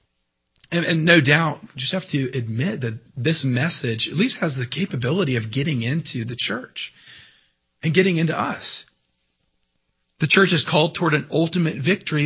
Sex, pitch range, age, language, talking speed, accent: male, 125-170 Hz, 40-59, English, 165 wpm, American